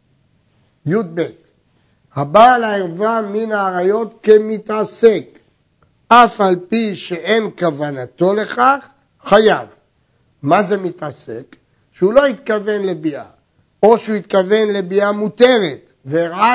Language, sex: Hebrew, male